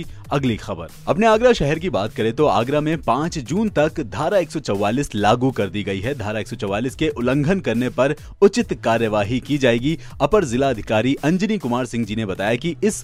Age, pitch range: 40-59, 115-165 Hz